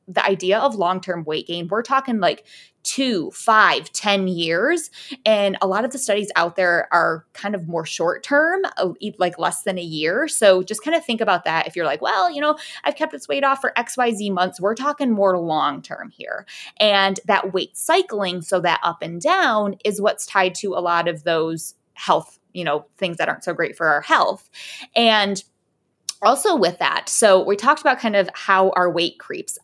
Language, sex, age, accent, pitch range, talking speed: English, female, 20-39, American, 185-255 Hz, 210 wpm